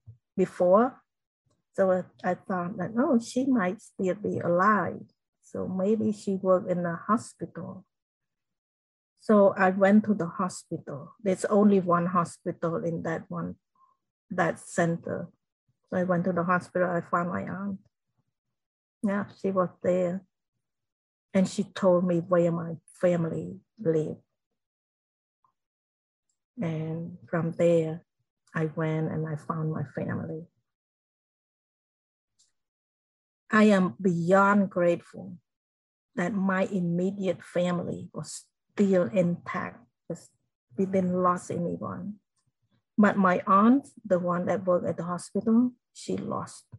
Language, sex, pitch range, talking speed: English, female, 170-195 Hz, 120 wpm